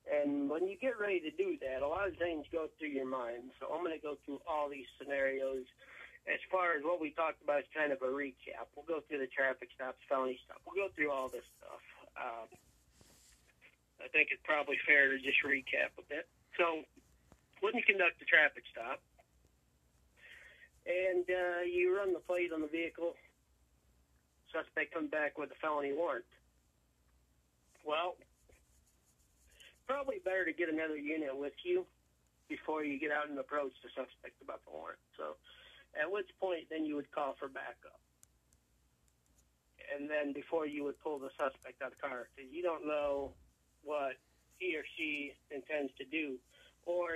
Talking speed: 180 wpm